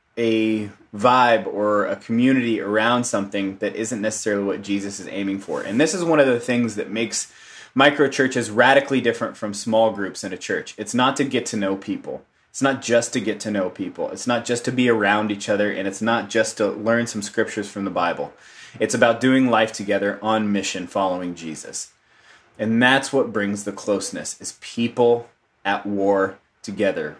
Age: 20-39